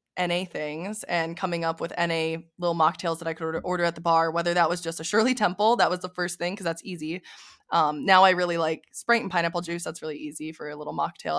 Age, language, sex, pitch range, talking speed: 20-39, English, female, 170-215 Hz, 250 wpm